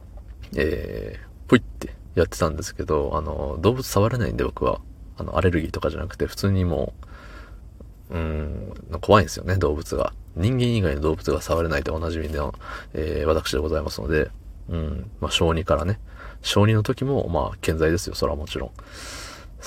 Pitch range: 80-100 Hz